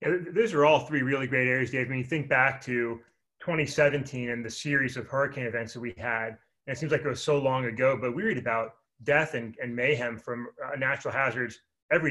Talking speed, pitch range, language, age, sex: 230 wpm, 120-145 Hz, English, 30-49, male